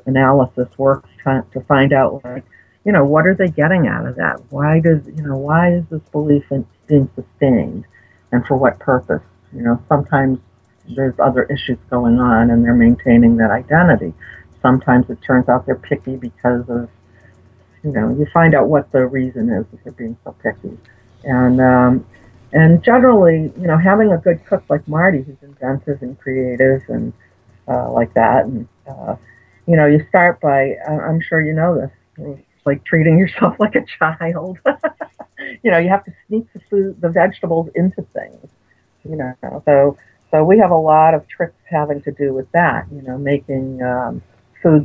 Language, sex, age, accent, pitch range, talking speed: English, female, 50-69, American, 125-160 Hz, 180 wpm